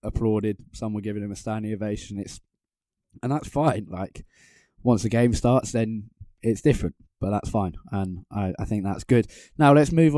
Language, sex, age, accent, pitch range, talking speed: English, male, 10-29, British, 100-120 Hz, 190 wpm